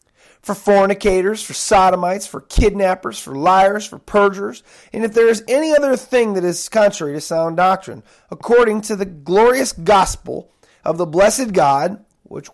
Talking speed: 160 wpm